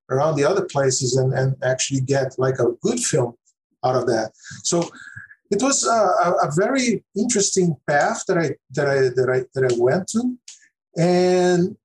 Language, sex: English, male